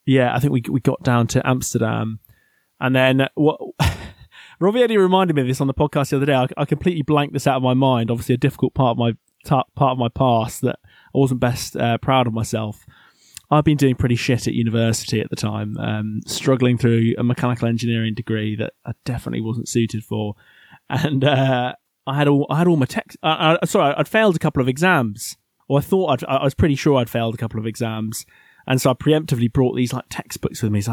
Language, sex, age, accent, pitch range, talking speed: English, male, 20-39, British, 115-135 Hz, 235 wpm